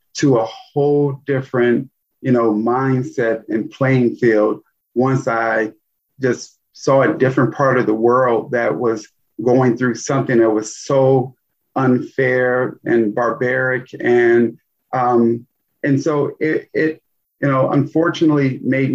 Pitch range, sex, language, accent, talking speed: 120-140 Hz, male, English, American, 130 wpm